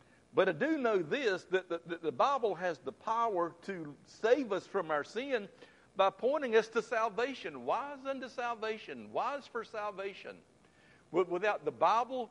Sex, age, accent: male, 60-79, American